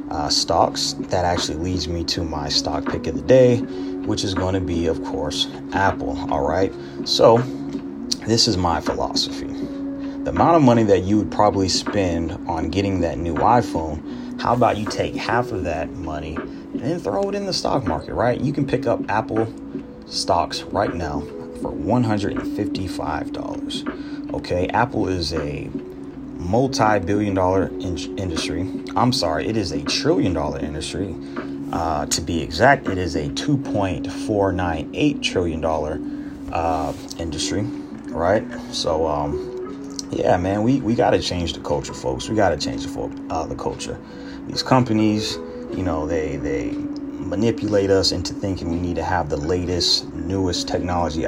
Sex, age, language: male, 30-49, English